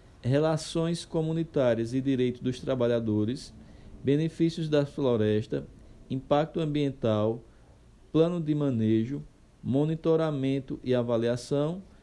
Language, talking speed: Portuguese, 85 wpm